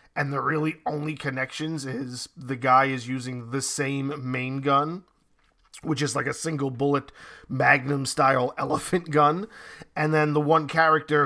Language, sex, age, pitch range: English, male, 30-49, 135-165 Hz